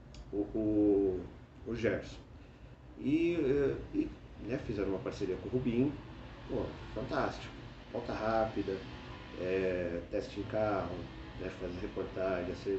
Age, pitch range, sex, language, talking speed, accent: 40-59, 95-120 Hz, male, Portuguese, 110 wpm, Brazilian